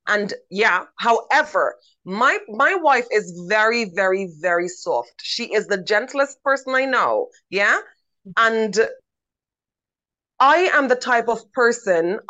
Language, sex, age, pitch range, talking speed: English, female, 20-39, 200-250 Hz, 125 wpm